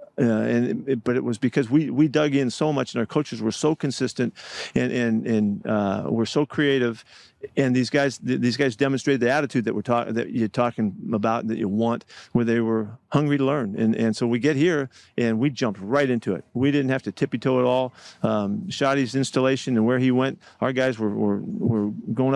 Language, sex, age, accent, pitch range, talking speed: English, male, 50-69, American, 115-140 Hz, 230 wpm